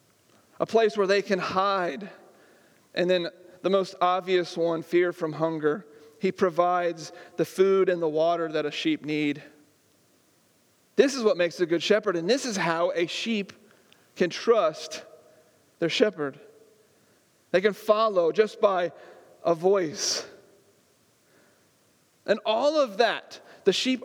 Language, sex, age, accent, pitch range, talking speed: English, male, 40-59, American, 170-225 Hz, 140 wpm